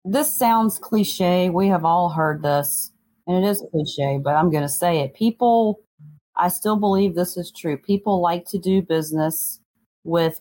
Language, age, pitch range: English, 40-59, 155-195 Hz